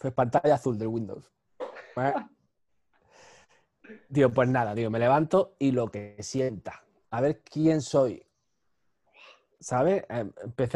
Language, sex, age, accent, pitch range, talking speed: Spanish, male, 30-49, Spanish, 125-165 Hz, 130 wpm